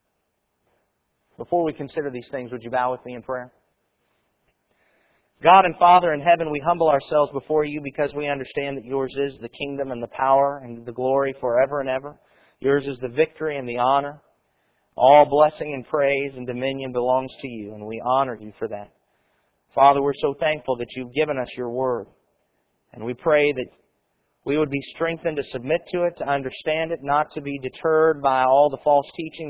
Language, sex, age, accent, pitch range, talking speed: English, male, 40-59, American, 130-150 Hz, 195 wpm